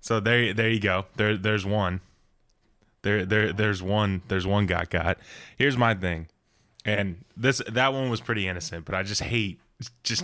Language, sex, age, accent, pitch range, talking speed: English, male, 10-29, American, 90-105 Hz, 180 wpm